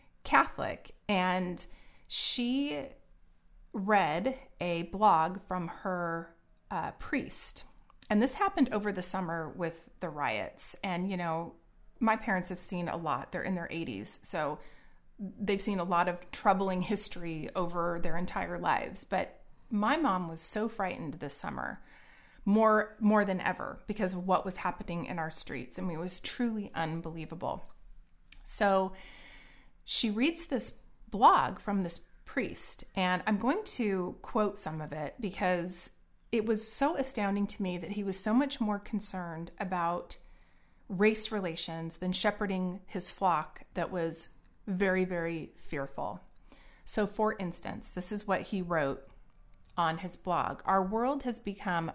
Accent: American